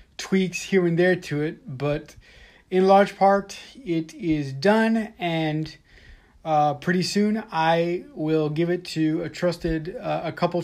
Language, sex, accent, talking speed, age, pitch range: English, male, American, 150 wpm, 30-49, 150-185 Hz